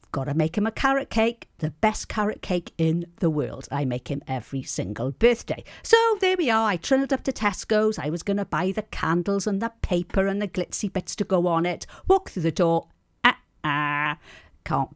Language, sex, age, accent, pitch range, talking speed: English, female, 50-69, British, 150-220 Hz, 215 wpm